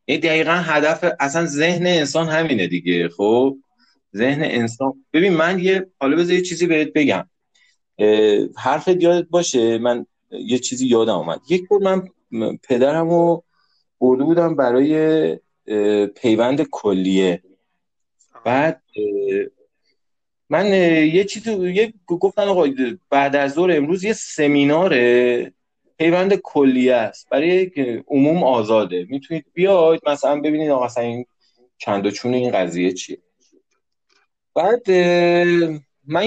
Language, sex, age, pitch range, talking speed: Persian, male, 30-49, 120-175 Hz, 110 wpm